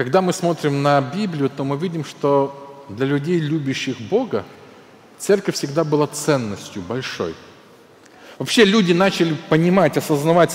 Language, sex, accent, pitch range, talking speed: Ukrainian, male, native, 155-205 Hz, 130 wpm